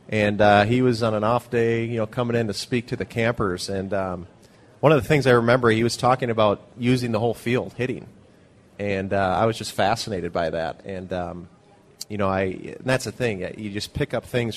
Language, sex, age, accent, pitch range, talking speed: English, male, 30-49, American, 100-120 Hz, 230 wpm